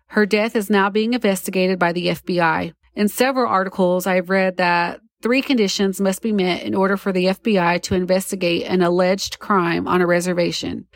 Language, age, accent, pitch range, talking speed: English, 30-49, American, 180-210 Hz, 180 wpm